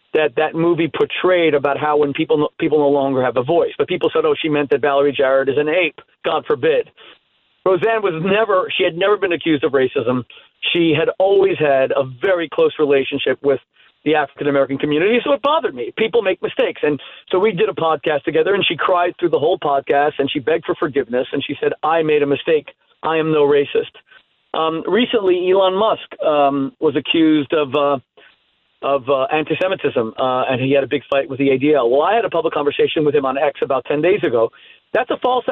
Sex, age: male, 40-59